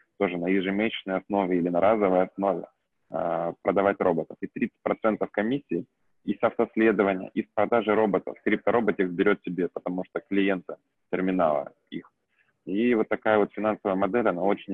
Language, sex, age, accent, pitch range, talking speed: Russian, male, 20-39, native, 95-105 Hz, 150 wpm